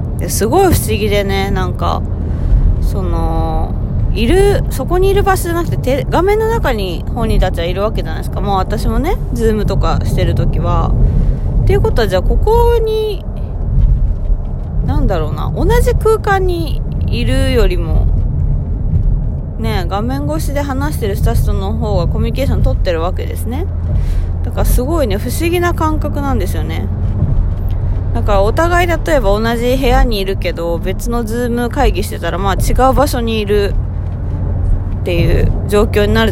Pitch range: 85-105 Hz